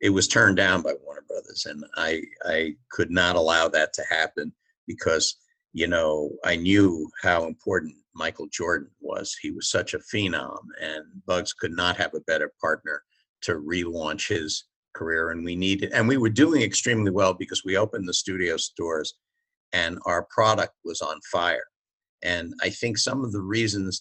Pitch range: 90-130 Hz